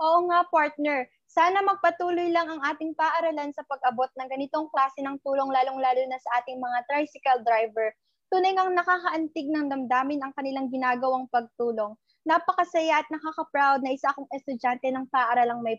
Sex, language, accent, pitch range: female, Filipino, native, 255-330 Hz